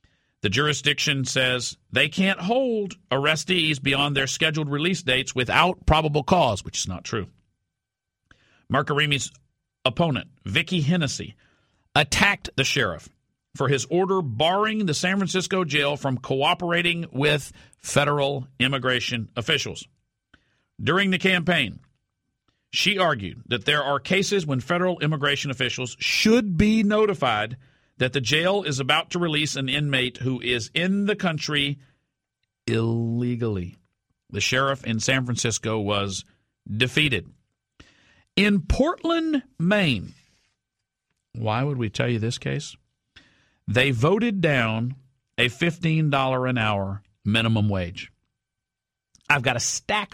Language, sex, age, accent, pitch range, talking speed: English, male, 50-69, American, 120-170 Hz, 120 wpm